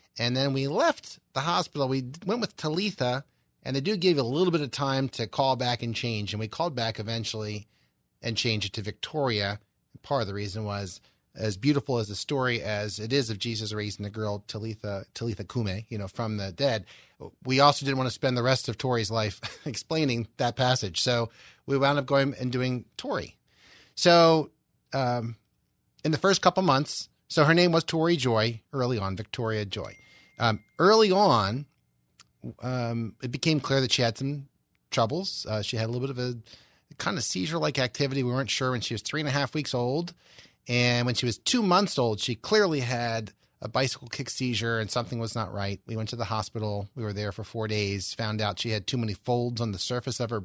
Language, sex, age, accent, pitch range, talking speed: English, male, 30-49, American, 105-135 Hz, 215 wpm